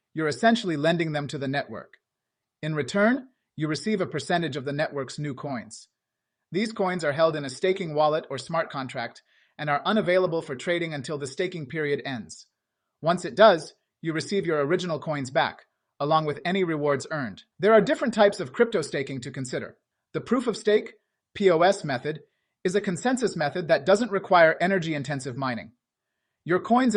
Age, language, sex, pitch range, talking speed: 30-49, English, male, 145-190 Hz, 180 wpm